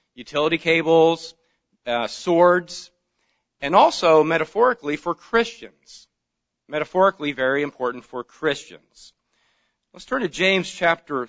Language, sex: English, male